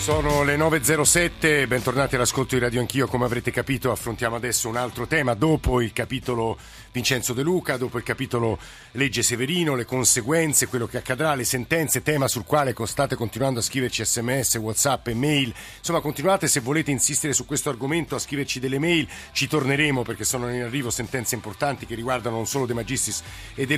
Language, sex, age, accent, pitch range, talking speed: Italian, male, 50-69, native, 115-145 Hz, 185 wpm